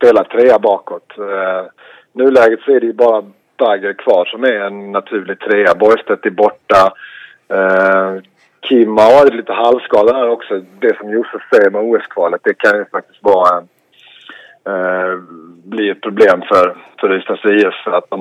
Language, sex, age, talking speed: English, male, 30-49, 170 wpm